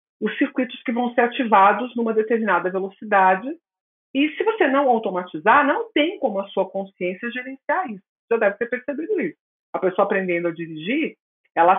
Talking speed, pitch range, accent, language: 170 wpm, 185-270 Hz, Brazilian, Portuguese